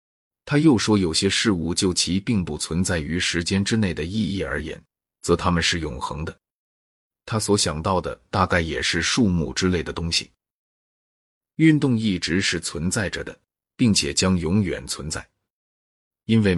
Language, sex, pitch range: Chinese, male, 85-105 Hz